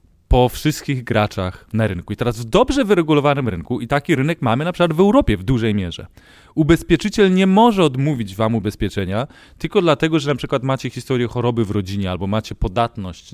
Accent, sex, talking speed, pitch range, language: native, male, 185 wpm, 115-160 Hz, Polish